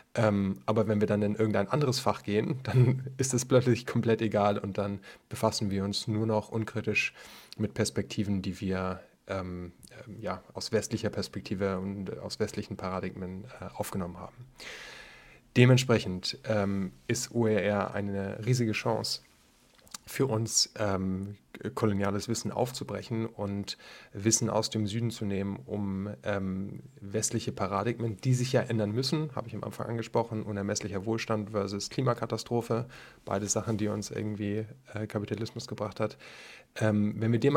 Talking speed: 140 wpm